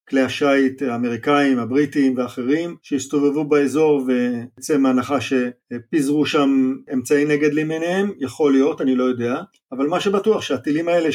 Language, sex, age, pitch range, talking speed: Hebrew, male, 50-69, 130-160 Hz, 130 wpm